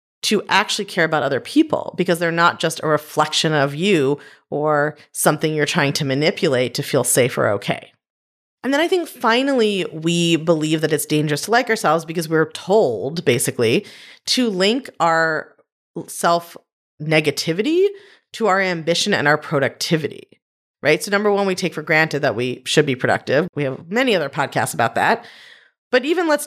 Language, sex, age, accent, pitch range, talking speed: English, female, 30-49, American, 155-225 Hz, 170 wpm